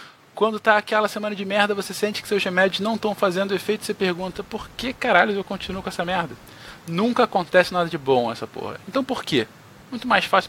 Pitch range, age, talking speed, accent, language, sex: 145-200 Hz, 20-39, 225 wpm, Brazilian, Portuguese, male